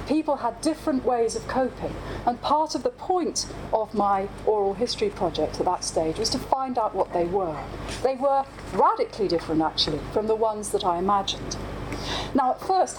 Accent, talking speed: British, 185 wpm